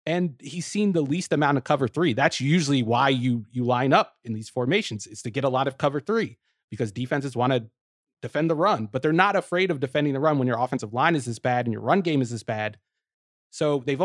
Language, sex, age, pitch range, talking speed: English, male, 30-49, 120-160 Hz, 250 wpm